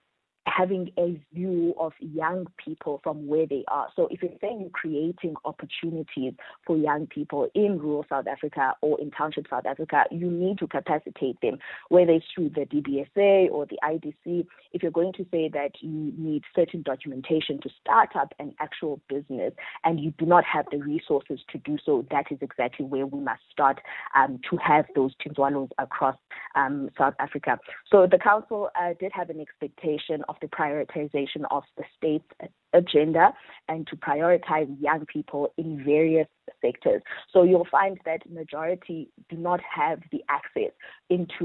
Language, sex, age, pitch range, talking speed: English, female, 20-39, 145-175 Hz, 170 wpm